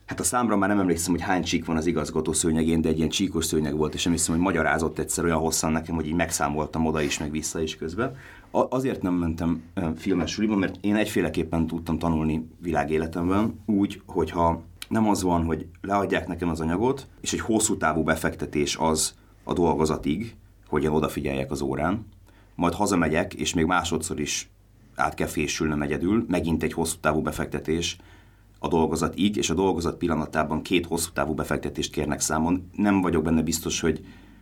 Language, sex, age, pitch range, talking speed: Hungarian, male, 30-49, 80-95 Hz, 175 wpm